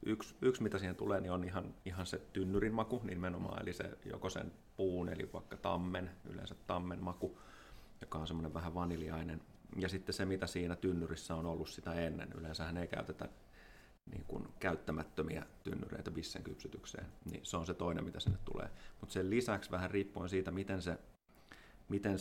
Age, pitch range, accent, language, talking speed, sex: 30-49, 85-95 Hz, native, Finnish, 175 wpm, male